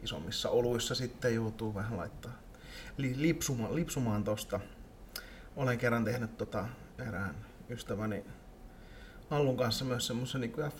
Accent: native